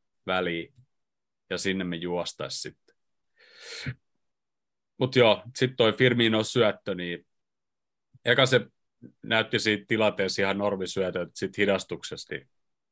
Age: 30-49